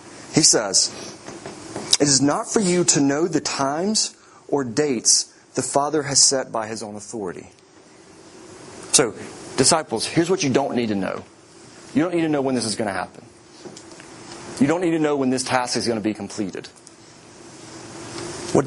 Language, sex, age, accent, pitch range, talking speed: English, male, 40-59, American, 125-160 Hz, 175 wpm